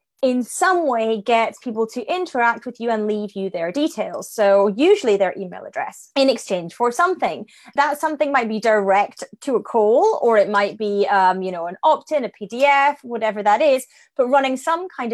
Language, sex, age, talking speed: English, female, 30-49, 195 wpm